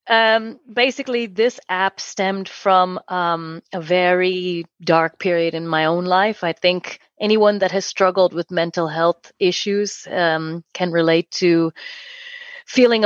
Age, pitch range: 30-49, 170-195 Hz